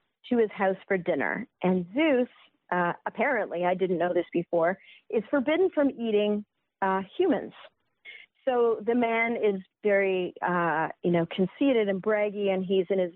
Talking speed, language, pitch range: 160 wpm, English, 185-235 Hz